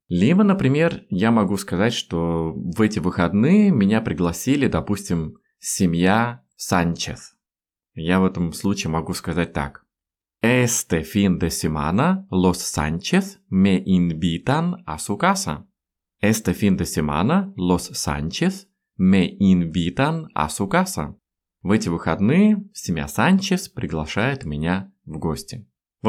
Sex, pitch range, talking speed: male, 85-140 Hz, 105 wpm